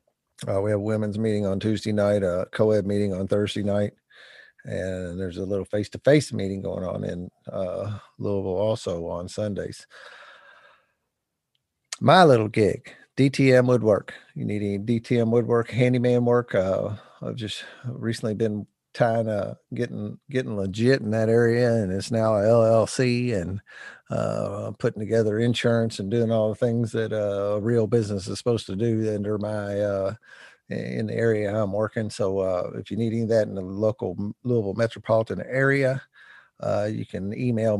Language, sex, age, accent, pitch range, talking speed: English, male, 50-69, American, 95-115 Hz, 165 wpm